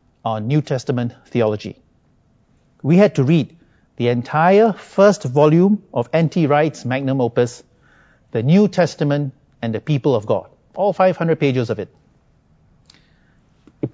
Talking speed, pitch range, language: 135 wpm, 120-170 Hz, English